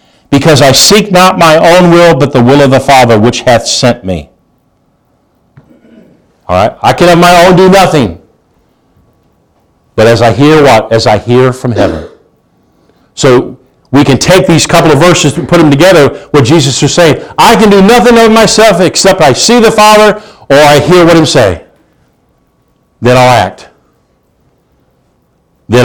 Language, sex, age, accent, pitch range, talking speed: English, male, 50-69, American, 120-165 Hz, 170 wpm